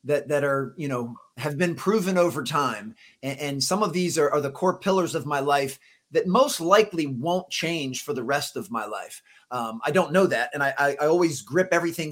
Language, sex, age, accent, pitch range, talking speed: English, male, 30-49, American, 135-170 Hz, 225 wpm